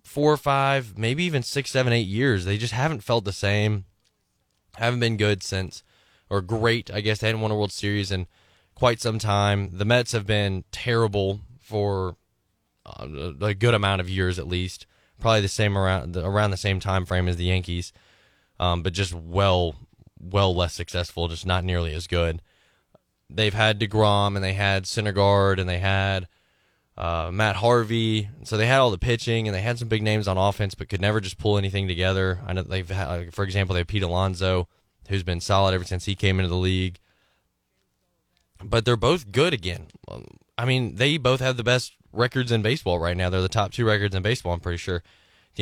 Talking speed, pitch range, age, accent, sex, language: 195 wpm, 95-115 Hz, 20-39, American, male, English